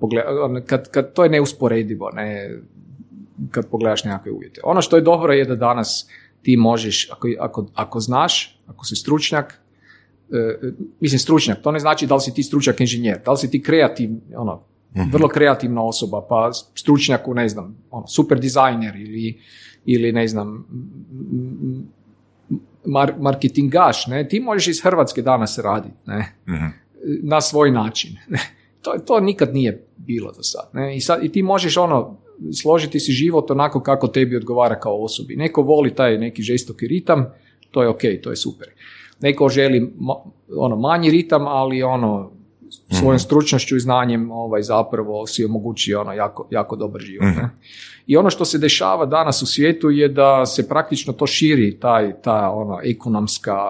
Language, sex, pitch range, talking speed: Croatian, male, 110-145 Hz, 160 wpm